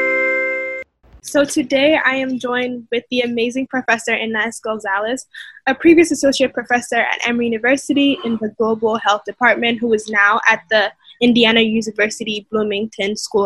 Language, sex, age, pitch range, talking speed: English, female, 10-29, 215-255 Hz, 145 wpm